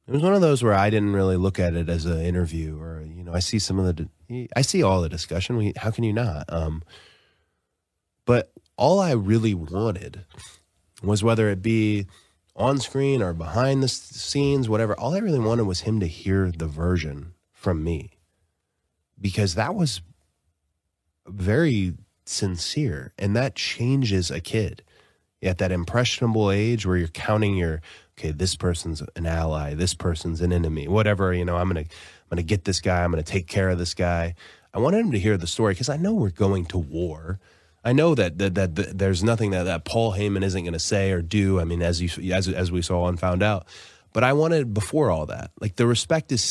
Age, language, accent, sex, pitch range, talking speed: 20-39, English, American, male, 85-110 Hz, 210 wpm